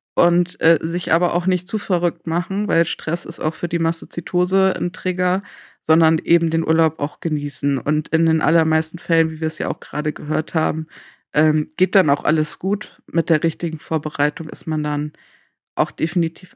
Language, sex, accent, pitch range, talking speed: German, female, German, 165-195 Hz, 190 wpm